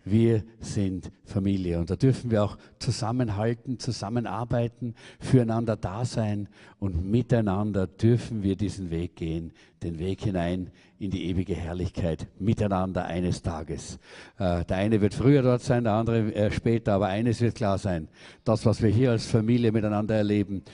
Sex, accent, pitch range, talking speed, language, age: male, German, 95-115 Hz, 150 wpm, German, 60-79